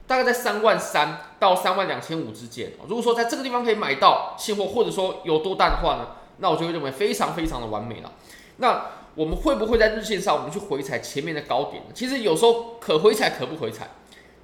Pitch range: 150-225 Hz